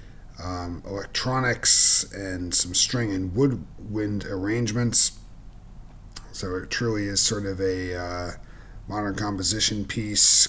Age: 40-59